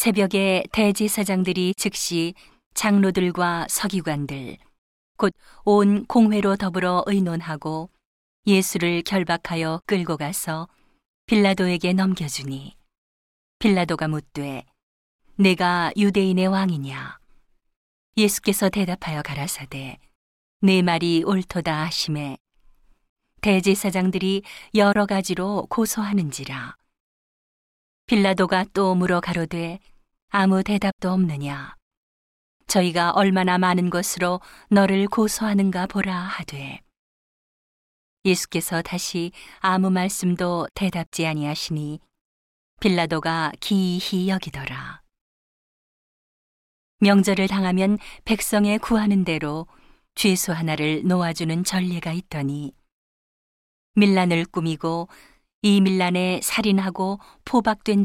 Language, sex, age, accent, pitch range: Korean, female, 40-59, native, 165-195 Hz